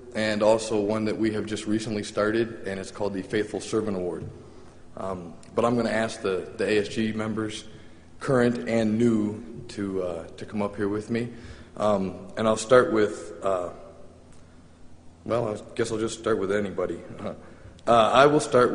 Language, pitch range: English, 95-120 Hz